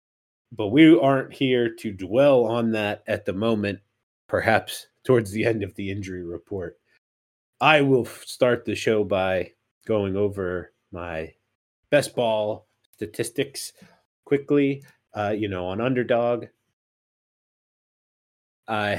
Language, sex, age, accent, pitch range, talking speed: English, male, 30-49, American, 95-120 Hz, 120 wpm